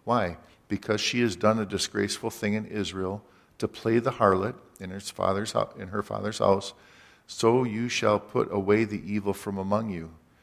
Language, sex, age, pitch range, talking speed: English, male, 50-69, 95-110 Hz, 185 wpm